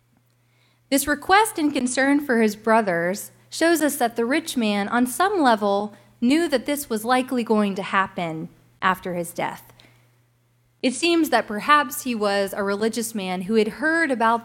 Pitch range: 185-255 Hz